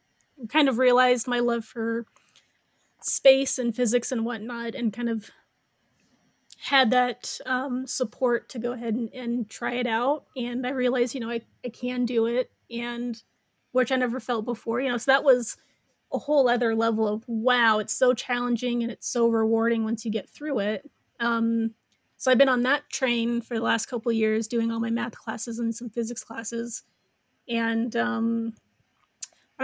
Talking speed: 180 wpm